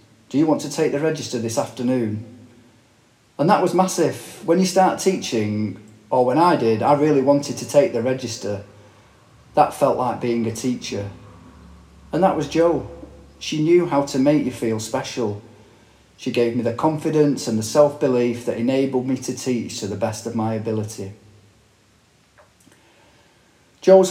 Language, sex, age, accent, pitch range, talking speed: English, male, 40-59, British, 110-130 Hz, 165 wpm